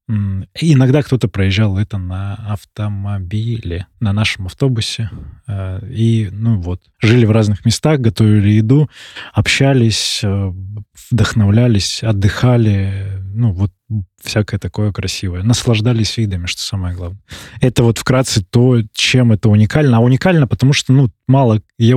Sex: male